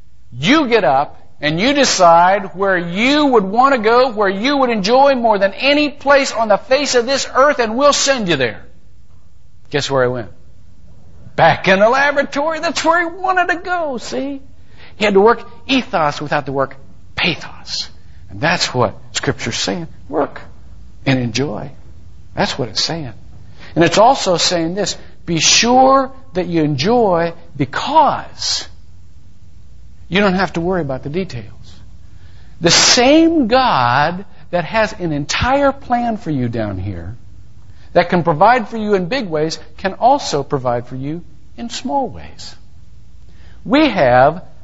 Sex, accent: male, American